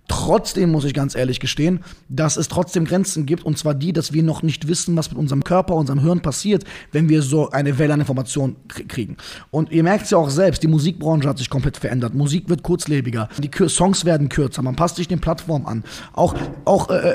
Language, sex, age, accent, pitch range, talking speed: German, male, 20-39, German, 145-185 Hz, 215 wpm